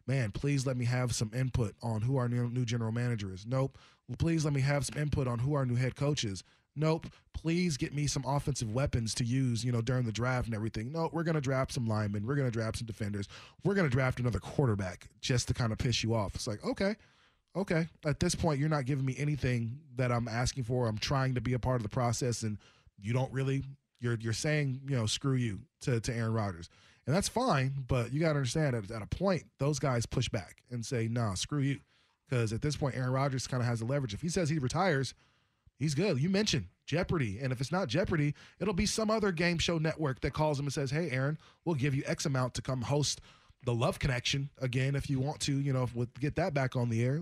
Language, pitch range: English, 120-150 Hz